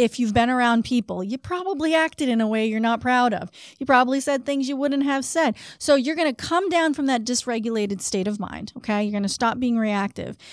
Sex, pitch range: female, 205-260 Hz